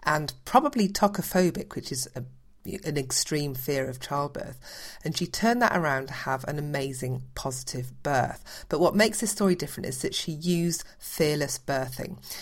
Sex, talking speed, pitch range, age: female, 160 wpm, 135-175 Hz, 40-59